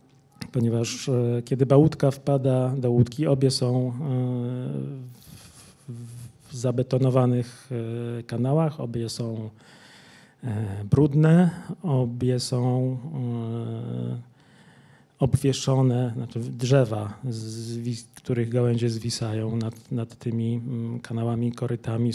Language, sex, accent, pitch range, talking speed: Polish, male, native, 120-135 Hz, 75 wpm